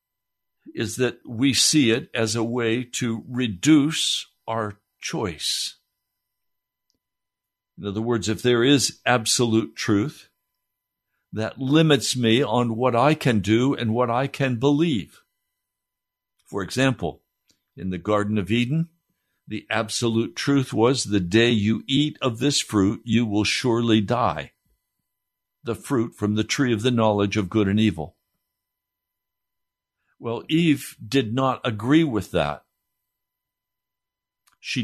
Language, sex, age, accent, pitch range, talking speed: English, male, 60-79, American, 105-130 Hz, 130 wpm